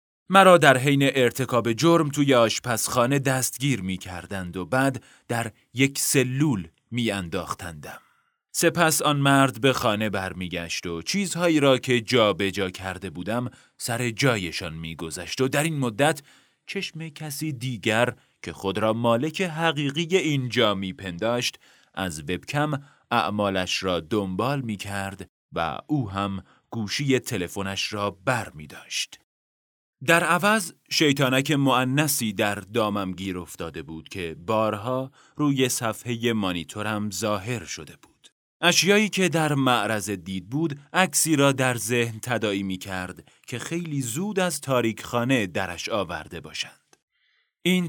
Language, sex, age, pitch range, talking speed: Persian, male, 30-49, 100-140 Hz, 130 wpm